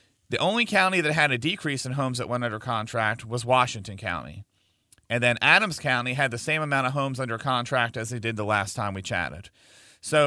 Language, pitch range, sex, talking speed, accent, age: English, 115-145 Hz, male, 215 wpm, American, 40-59